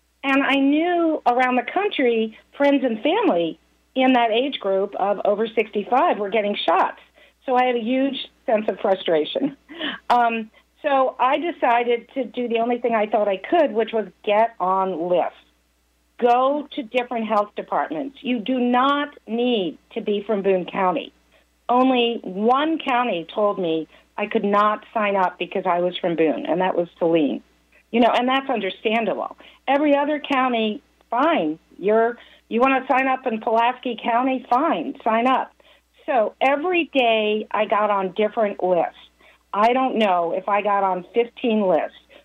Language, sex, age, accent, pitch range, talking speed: English, female, 50-69, American, 205-260 Hz, 165 wpm